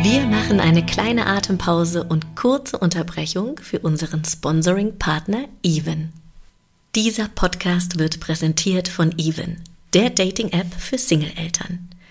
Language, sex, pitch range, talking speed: German, female, 165-200 Hz, 110 wpm